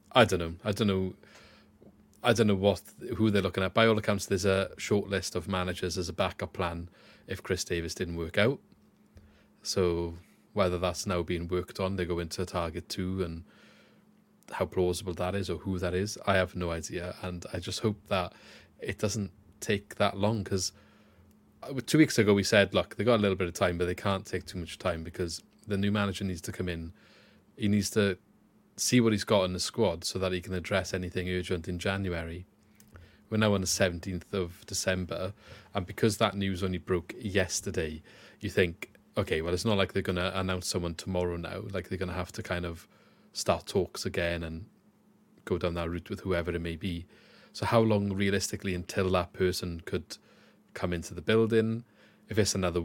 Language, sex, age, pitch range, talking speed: English, male, 30-49, 90-105 Hz, 200 wpm